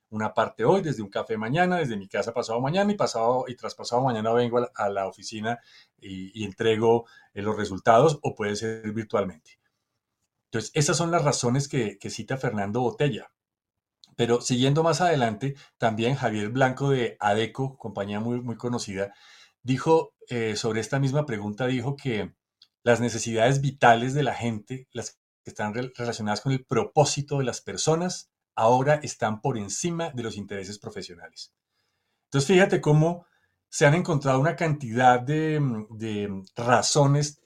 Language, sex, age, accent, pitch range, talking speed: Spanish, male, 40-59, Colombian, 110-140 Hz, 160 wpm